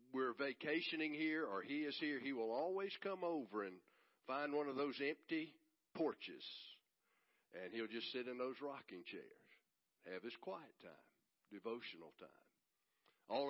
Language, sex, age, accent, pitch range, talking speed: English, male, 60-79, American, 125-165 Hz, 150 wpm